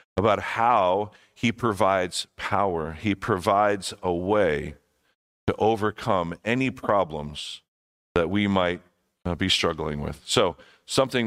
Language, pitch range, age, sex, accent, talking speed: English, 105-135 Hz, 50-69, male, American, 110 wpm